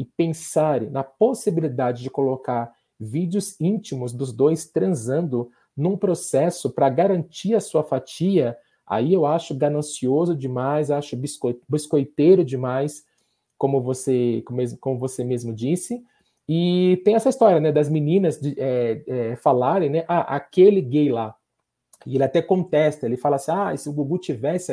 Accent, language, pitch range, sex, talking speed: Brazilian, Portuguese, 135-190 Hz, male, 145 wpm